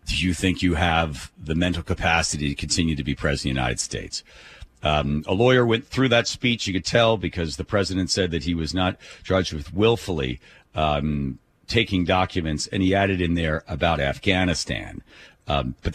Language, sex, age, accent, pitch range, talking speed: English, male, 40-59, American, 85-115 Hz, 190 wpm